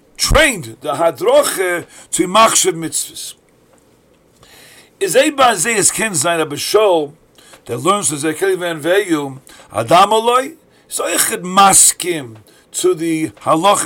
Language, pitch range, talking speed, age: English, 165-255 Hz, 110 wpm, 50-69